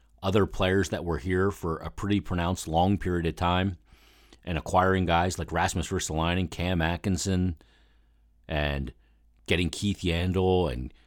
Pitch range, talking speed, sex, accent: 80-100 Hz, 140 wpm, male, American